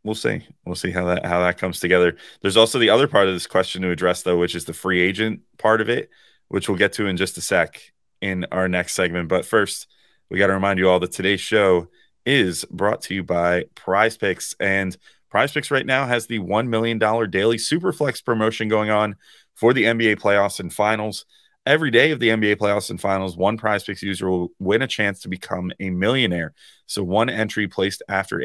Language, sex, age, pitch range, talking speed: English, male, 30-49, 90-110 Hz, 220 wpm